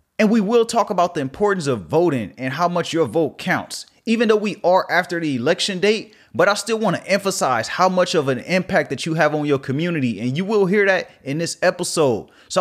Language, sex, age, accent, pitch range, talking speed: English, male, 30-49, American, 135-180 Hz, 235 wpm